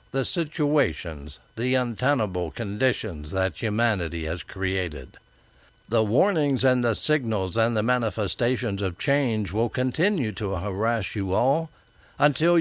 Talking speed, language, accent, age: 125 wpm, English, American, 60-79